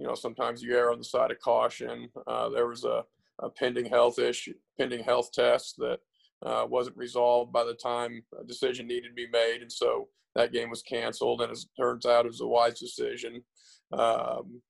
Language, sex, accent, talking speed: English, male, American, 205 wpm